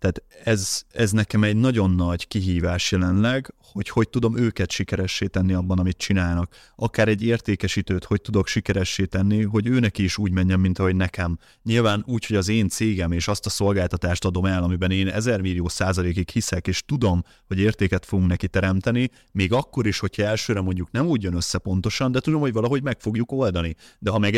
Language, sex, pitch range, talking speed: Hungarian, male, 95-120 Hz, 195 wpm